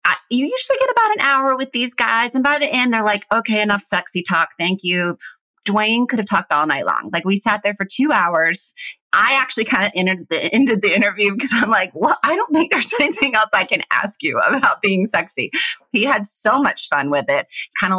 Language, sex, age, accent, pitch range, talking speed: English, female, 30-49, American, 170-230 Hz, 235 wpm